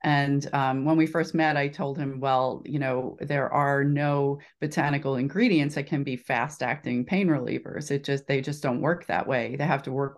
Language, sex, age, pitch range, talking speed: English, female, 30-49, 135-160 Hz, 210 wpm